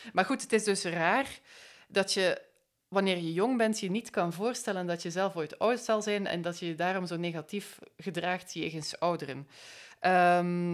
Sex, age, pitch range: female, 20-39, 160-190 Hz